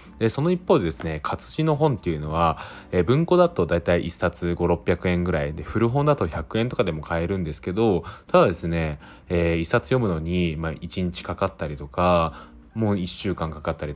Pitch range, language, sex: 80-110 Hz, Japanese, male